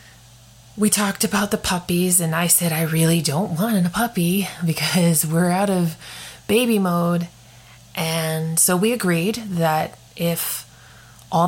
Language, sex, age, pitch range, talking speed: English, female, 30-49, 125-180 Hz, 140 wpm